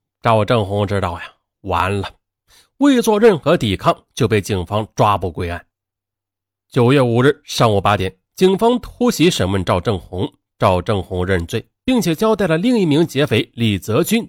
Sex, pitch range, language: male, 100-155 Hz, Chinese